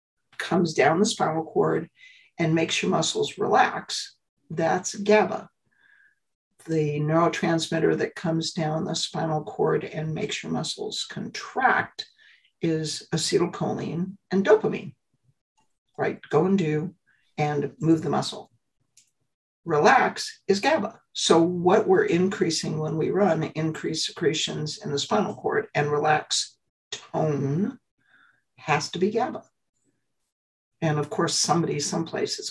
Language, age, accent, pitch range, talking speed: English, 60-79, American, 160-215 Hz, 120 wpm